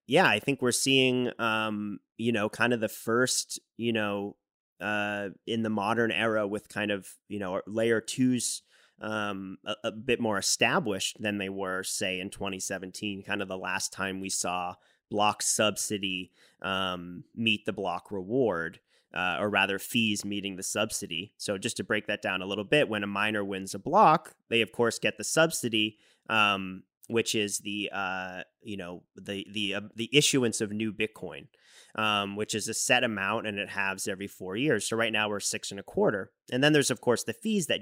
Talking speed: 195 wpm